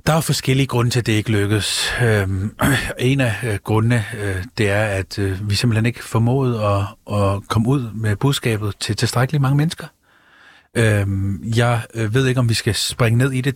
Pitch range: 105-125 Hz